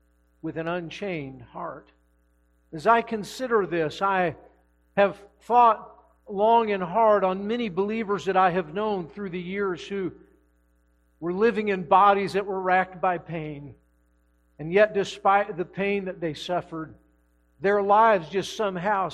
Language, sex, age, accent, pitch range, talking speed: English, male, 50-69, American, 150-195 Hz, 145 wpm